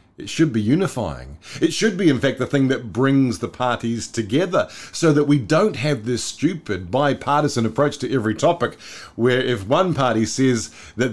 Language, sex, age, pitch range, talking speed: English, male, 50-69, 95-125 Hz, 185 wpm